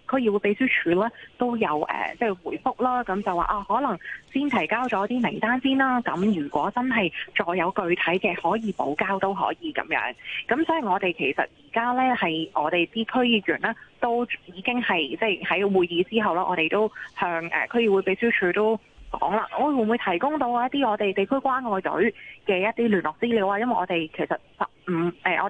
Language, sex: Chinese, female